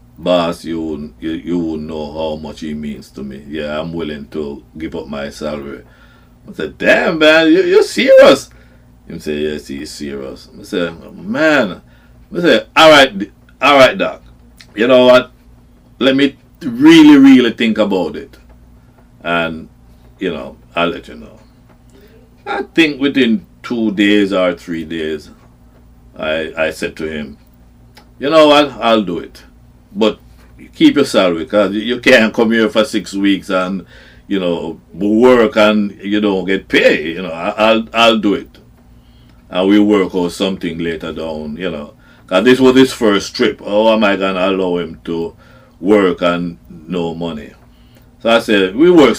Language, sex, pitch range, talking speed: English, male, 75-110 Hz, 170 wpm